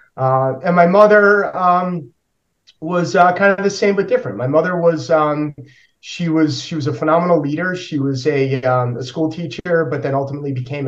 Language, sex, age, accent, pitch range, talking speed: English, male, 30-49, American, 130-155 Hz, 195 wpm